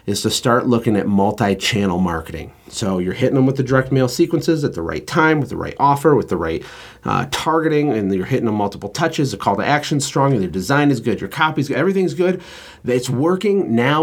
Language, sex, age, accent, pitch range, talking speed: English, male, 30-49, American, 100-135 Hz, 225 wpm